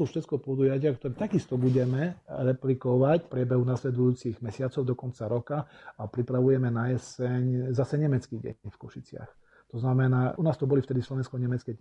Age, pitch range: 40-59, 120-135 Hz